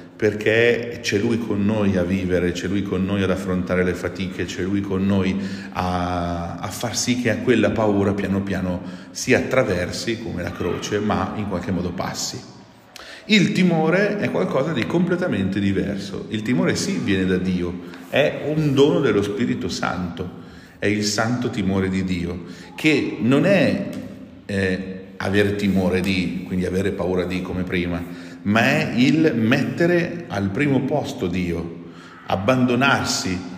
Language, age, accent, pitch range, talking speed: Italian, 40-59, native, 90-105 Hz, 150 wpm